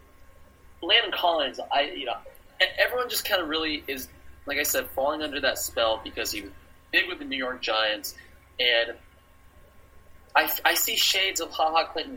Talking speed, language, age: 180 wpm, English, 20-39